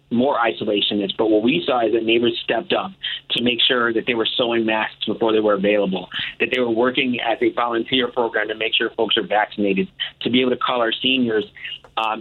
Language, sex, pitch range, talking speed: English, male, 110-130 Hz, 225 wpm